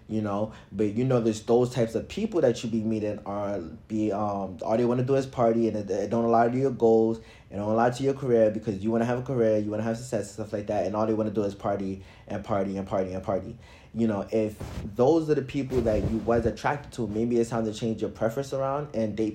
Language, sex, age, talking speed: English, male, 20-39, 275 wpm